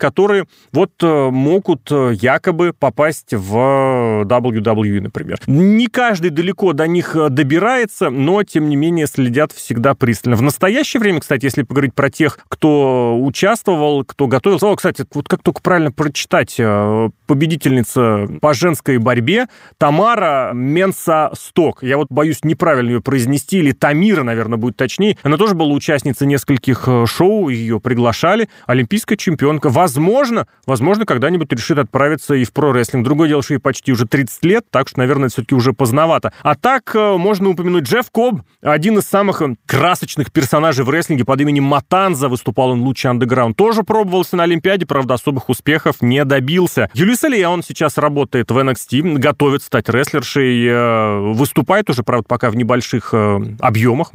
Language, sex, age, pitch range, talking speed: Russian, male, 30-49, 125-180 Hz, 150 wpm